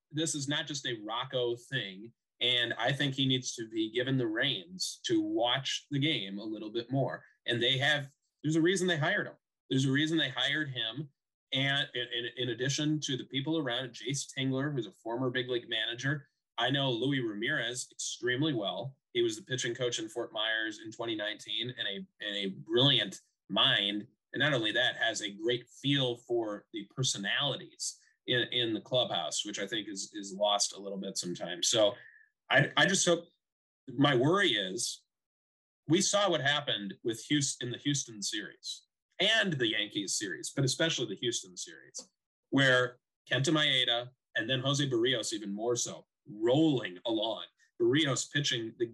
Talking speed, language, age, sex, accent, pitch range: 180 wpm, English, 20-39, male, American, 120-160 Hz